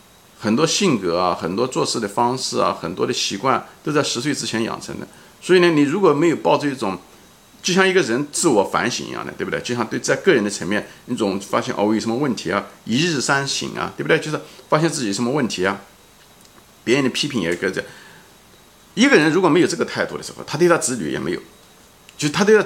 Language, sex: Chinese, male